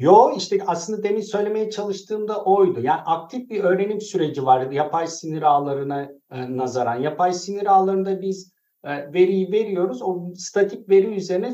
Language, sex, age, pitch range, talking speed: Turkish, male, 50-69, 175-230 Hz, 150 wpm